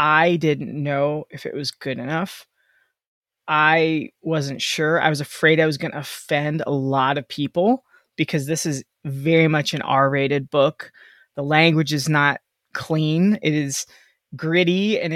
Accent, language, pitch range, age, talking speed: American, English, 150-195 Hz, 20-39, 160 wpm